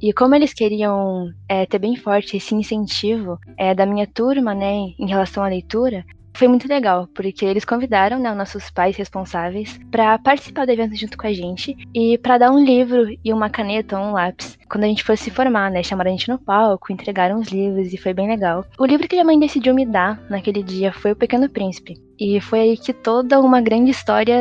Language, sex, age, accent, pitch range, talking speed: Portuguese, female, 10-29, Brazilian, 195-245 Hz, 215 wpm